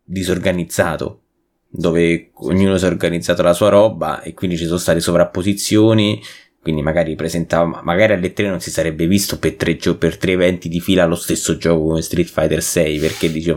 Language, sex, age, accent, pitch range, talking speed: Italian, male, 20-39, native, 85-100 Hz, 180 wpm